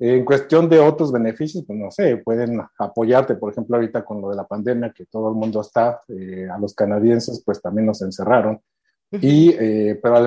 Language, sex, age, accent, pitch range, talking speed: Spanish, male, 50-69, Mexican, 100-120 Hz, 205 wpm